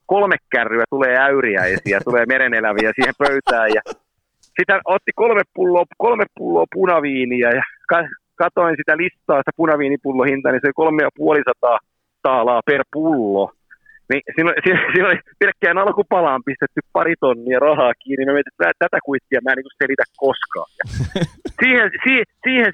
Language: Finnish